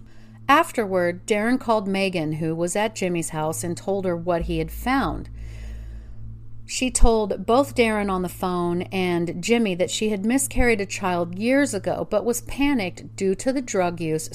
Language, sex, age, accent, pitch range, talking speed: English, female, 40-59, American, 155-210 Hz, 170 wpm